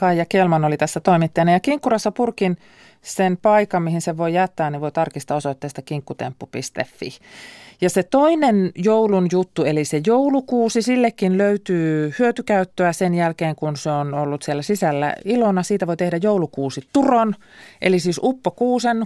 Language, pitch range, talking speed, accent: Finnish, 150-195 Hz, 145 wpm, native